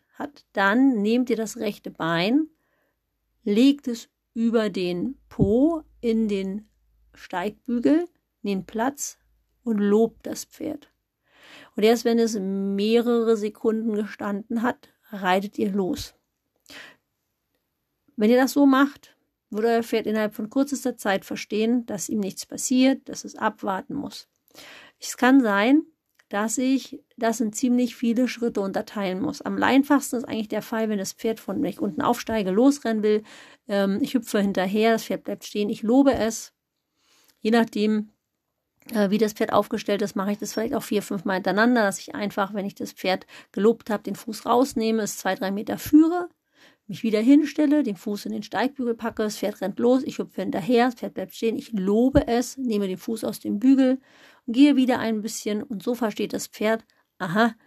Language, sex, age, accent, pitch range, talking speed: German, female, 40-59, German, 210-255 Hz, 170 wpm